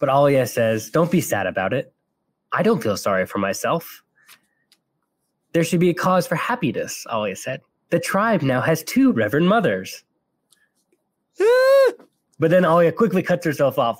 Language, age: English, 20-39